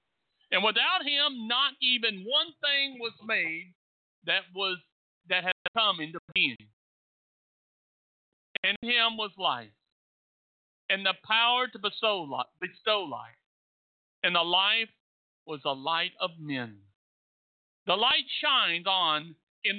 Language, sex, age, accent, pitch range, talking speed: English, male, 60-79, American, 170-235 Hz, 125 wpm